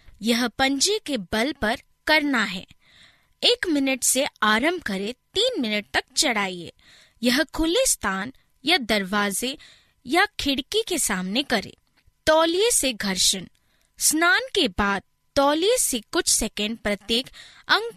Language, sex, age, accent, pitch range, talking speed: Hindi, female, 20-39, native, 210-330 Hz, 125 wpm